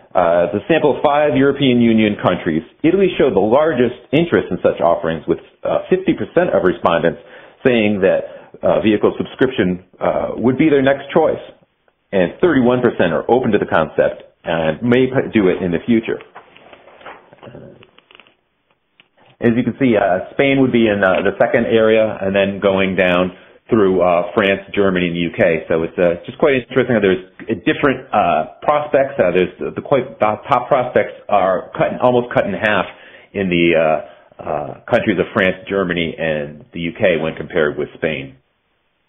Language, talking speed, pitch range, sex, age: English, 170 wpm, 85-125 Hz, male, 40-59